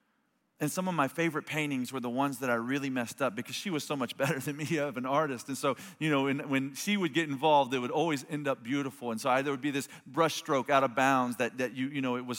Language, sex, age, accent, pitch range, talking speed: English, male, 40-59, American, 120-145 Hz, 275 wpm